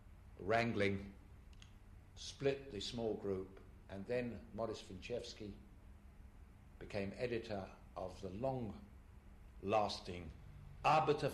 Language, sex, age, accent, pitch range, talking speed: English, male, 60-79, British, 90-125 Hz, 80 wpm